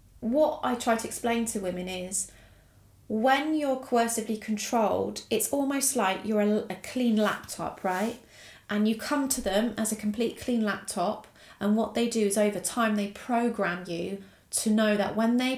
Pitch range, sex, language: 195-230 Hz, female, English